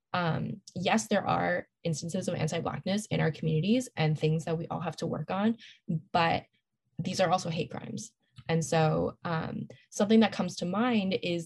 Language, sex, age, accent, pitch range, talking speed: English, female, 20-39, American, 160-195 Hz, 180 wpm